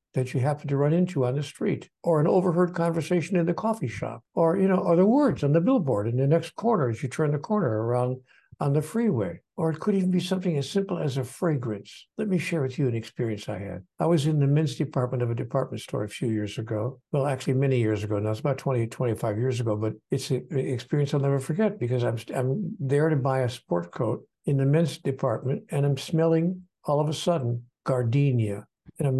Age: 60-79